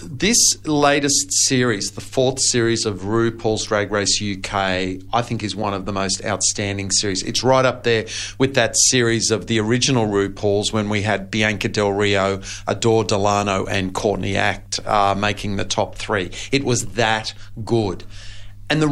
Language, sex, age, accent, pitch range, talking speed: English, male, 40-59, Australian, 100-130 Hz, 170 wpm